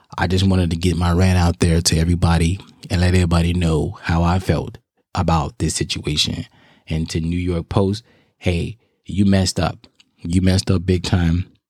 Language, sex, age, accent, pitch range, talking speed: English, male, 20-39, American, 85-100 Hz, 180 wpm